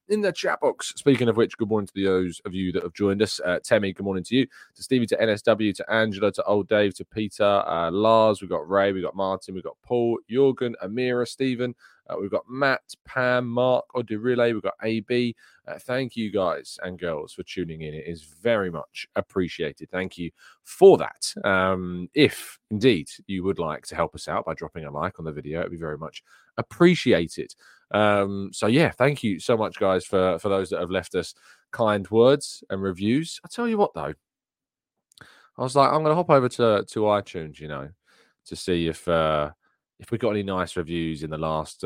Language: English